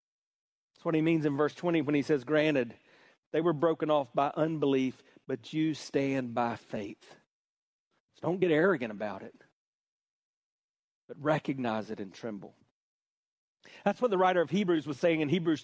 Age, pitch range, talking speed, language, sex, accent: 40-59, 165-220 Hz, 165 wpm, English, male, American